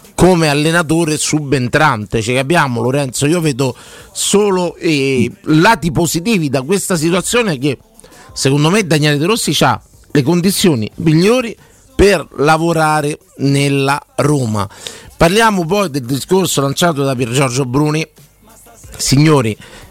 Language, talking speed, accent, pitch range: Italian, 120 wpm, native, 130-160 Hz